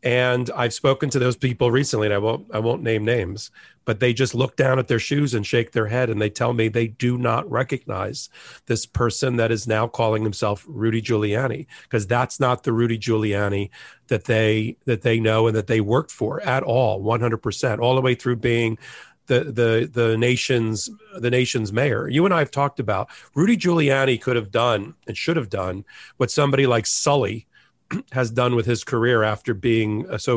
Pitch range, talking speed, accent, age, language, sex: 115-135 Hz, 200 wpm, American, 40-59, English, male